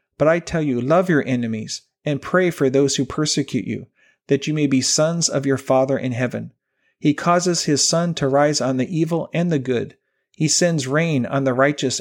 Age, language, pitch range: 40-59, English, 125-150 Hz